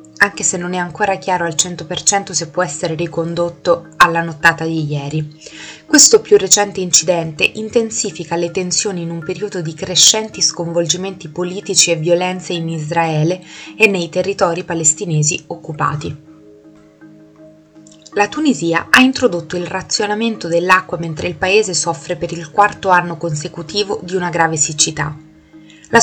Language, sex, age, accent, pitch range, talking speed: Italian, female, 20-39, native, 165-195 Hz, 140 wpm